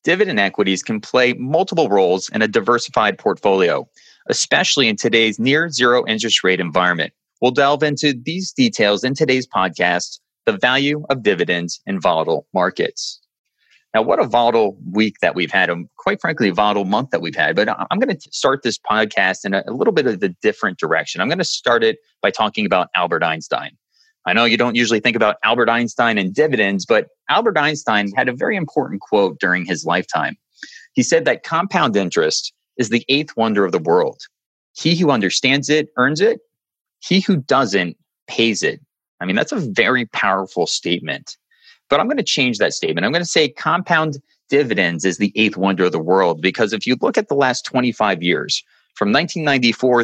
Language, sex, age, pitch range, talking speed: English, male, 30-49, 110-165 Hz, 190 wpm